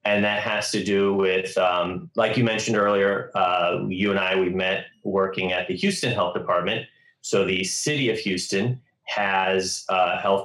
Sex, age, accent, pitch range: male, 30-49, American, 90-105 Hz